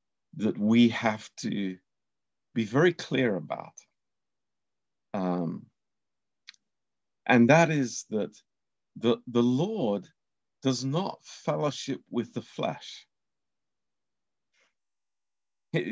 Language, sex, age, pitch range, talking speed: Romanian, male, 50-69, 110-145 Hz, 85 wpm